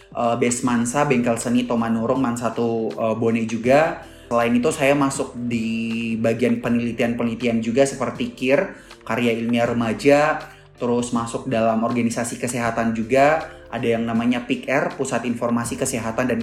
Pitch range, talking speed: 115-130 Hz, 140 wpm